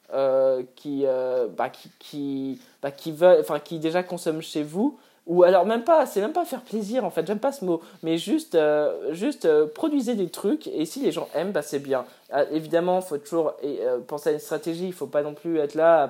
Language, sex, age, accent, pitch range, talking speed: French, male, 20-39, French, 145-175 Hz, 235 wpm